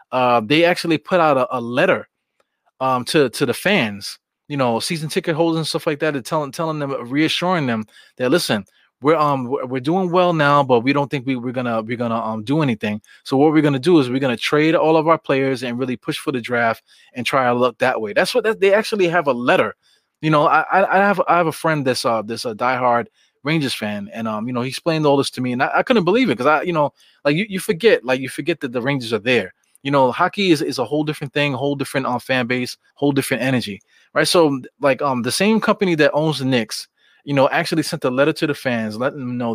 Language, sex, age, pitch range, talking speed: English, male, 20-39, 125-155 Hz, 255 wpm